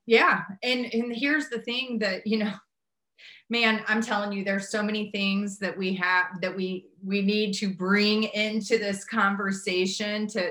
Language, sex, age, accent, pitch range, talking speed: English, female, 30-49, American, 180-225 Hz, 170 wpm